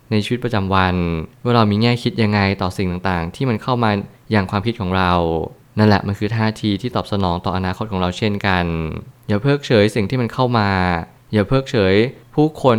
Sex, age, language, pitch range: male, 20-39, Thai, 100-120 Hz